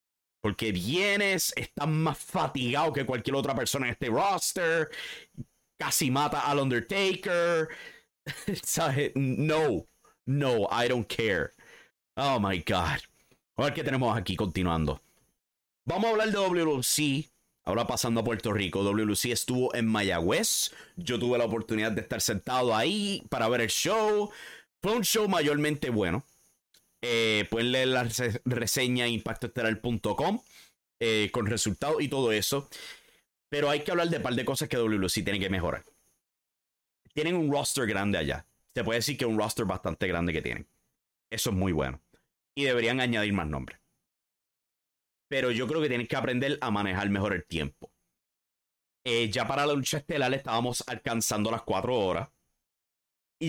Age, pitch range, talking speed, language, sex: 30-49, 105-145 Hz, 155 wpm, English, male